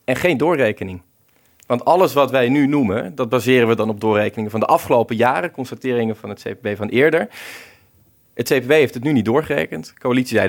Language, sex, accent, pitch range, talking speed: Dutch, male, Dutch, 110-140 Hz, 200 wpm